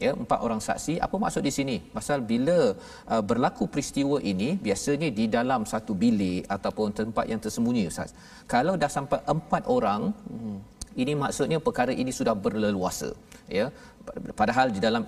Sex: male